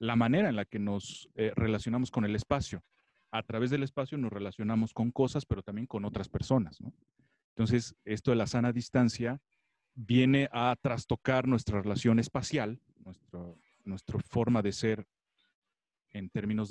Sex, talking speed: male, 160 wpm